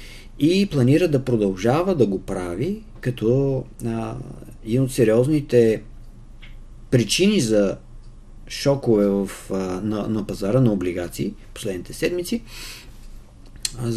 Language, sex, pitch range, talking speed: Bulgarian, male, 100-130 Hz, 105 wpm